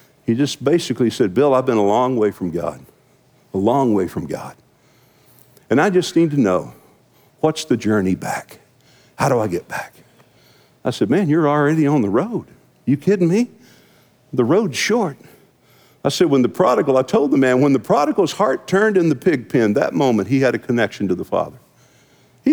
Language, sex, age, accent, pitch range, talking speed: English, male, 50-69, American, 115-155 Hz, 195 wpm